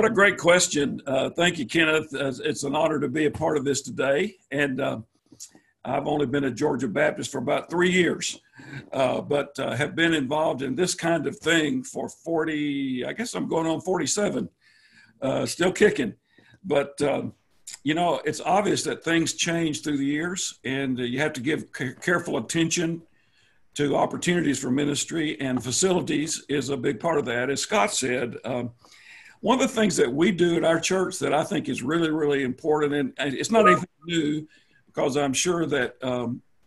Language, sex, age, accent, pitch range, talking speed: English, male, 50-69, American, 140-175 Hz, 190 wpm